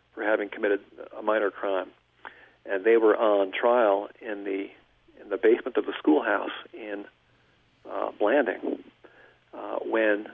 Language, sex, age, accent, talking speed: English, male, 50-69, American, 140 wpm